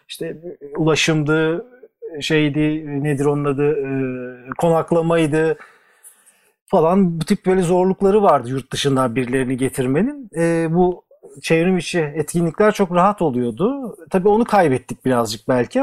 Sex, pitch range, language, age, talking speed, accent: male, 130-180 Hz, Turkish, 40-59, 120 wpm, native